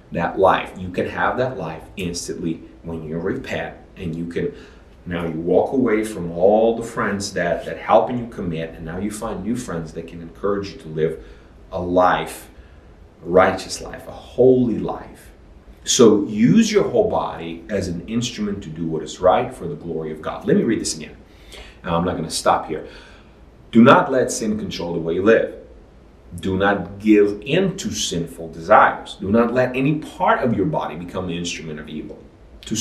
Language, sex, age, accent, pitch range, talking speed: English, male, 30-49, American, 80-110 Hz, 195 wpm